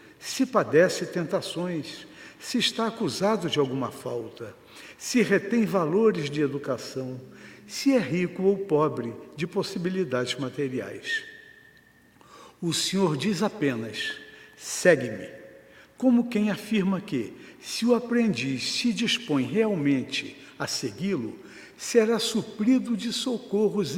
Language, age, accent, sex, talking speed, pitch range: Portuguese, 60-79, Brazilian, male, 110 wpm, 145-210 Hz